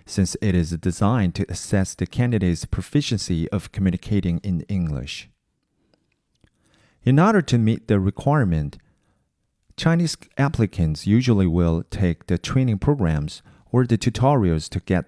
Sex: male